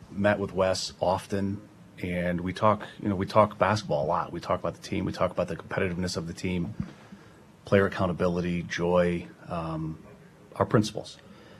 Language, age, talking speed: English, 30-49, 170 wpm